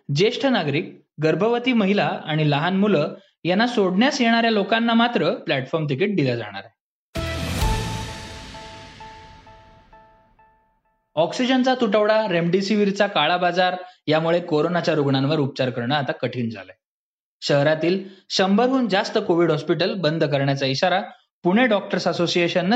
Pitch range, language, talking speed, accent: 140-205 Hz, Marathi, 105 wpm, native